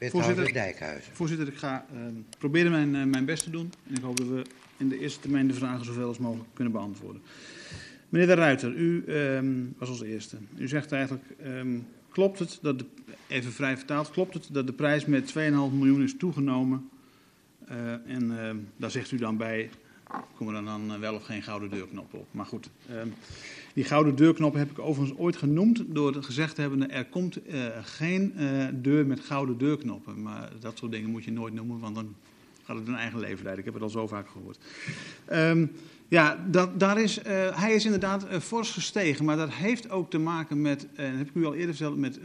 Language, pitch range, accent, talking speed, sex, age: Dutch, 120-165 Hz, Dutch, 210 wpm, male, 50-69